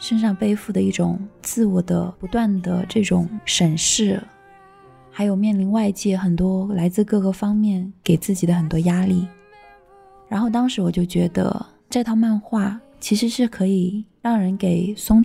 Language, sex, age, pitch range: Chinese, female, 20-39, 180-215 Hz